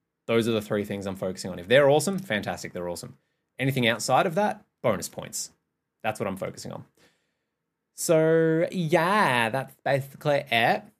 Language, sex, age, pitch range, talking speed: English, male, 20-39, 95-125 Hz, 165 wpm